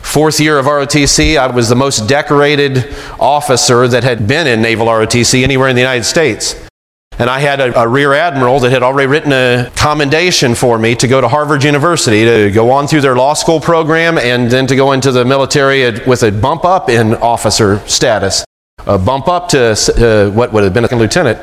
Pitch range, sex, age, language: 115-145 Hz, male, 40-59, English